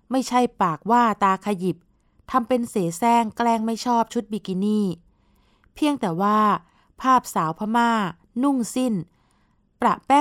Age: 20-39